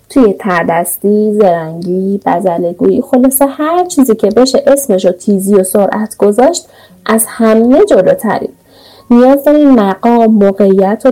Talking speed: 125 wpm